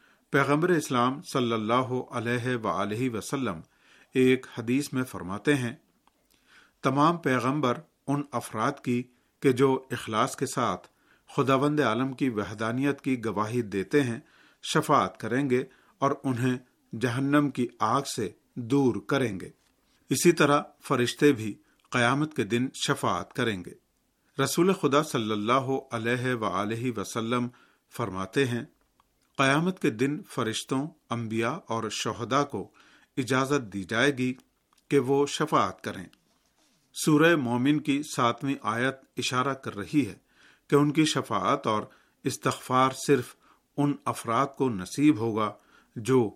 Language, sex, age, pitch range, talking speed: Urdu, male, 50-69, 115-140 Hz, 130 wpm